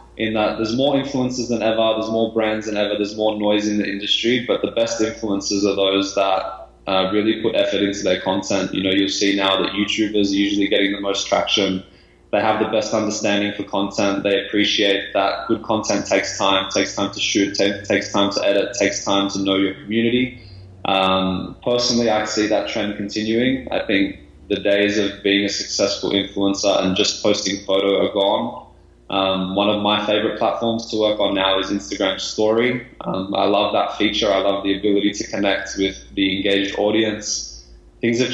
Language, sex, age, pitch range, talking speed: English, male, 20-39, 100-110 Hz, 195 wpm